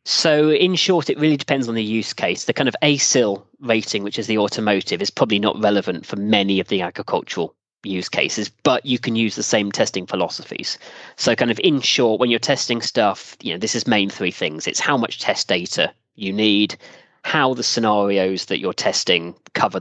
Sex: male